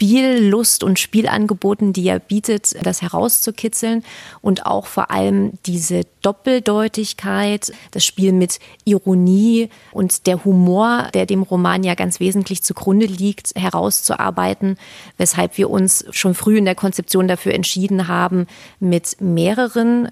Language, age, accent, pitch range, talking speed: German, 30-49, German, 180-215 Hz, 130 wpm